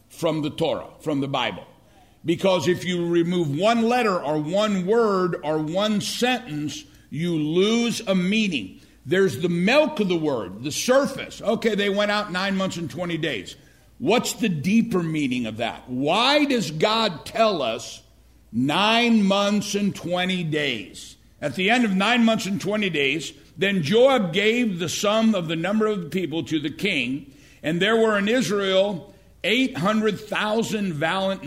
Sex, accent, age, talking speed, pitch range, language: male, American, 60-79, 160 wpm, 155-215 Hz, English